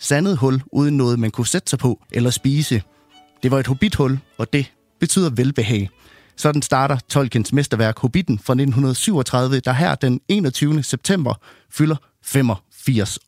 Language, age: Danish, 30-49